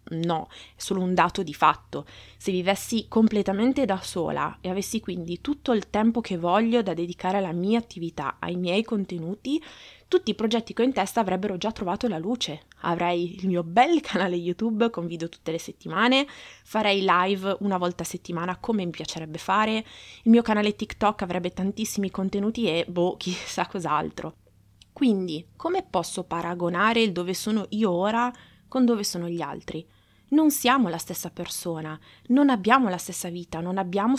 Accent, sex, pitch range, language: native, female, 175-230 Hz, Italian